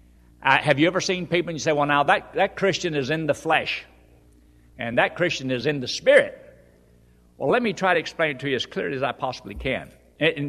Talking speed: 235 wpm